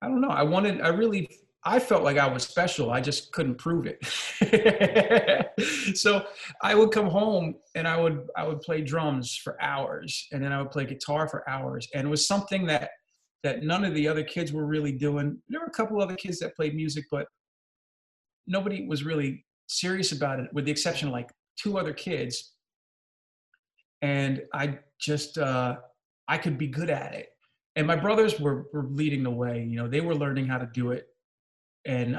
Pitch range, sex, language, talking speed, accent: 130-160 Hz, male, English, 200 wpm, American